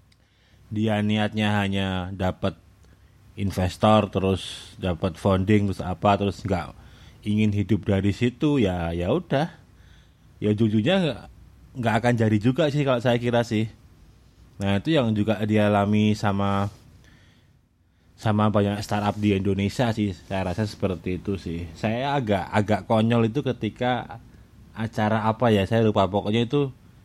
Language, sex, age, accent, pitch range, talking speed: Indonesian, male, 20-39, native, 100-115 Hz, 140 wpm